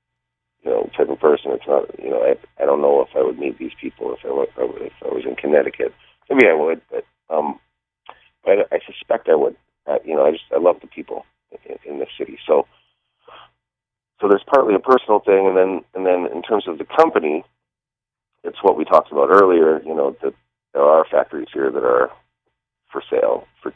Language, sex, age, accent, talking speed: English, male, 30-49, American, 210 wpm